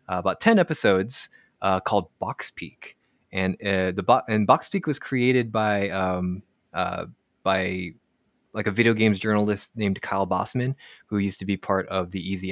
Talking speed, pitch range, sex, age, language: 175 wpm, 95-120 Hz, male, 20-39, English